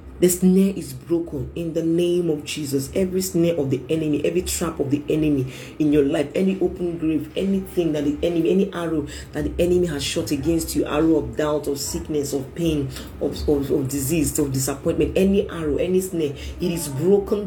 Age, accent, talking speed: 40-59, Nigerian, 200 wpm